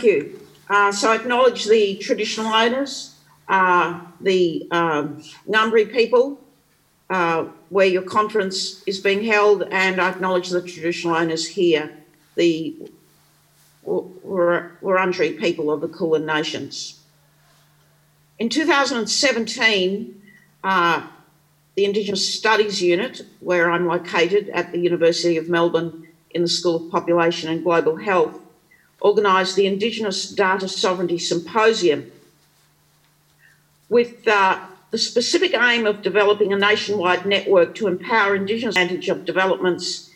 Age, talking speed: 50-69, 120 wpm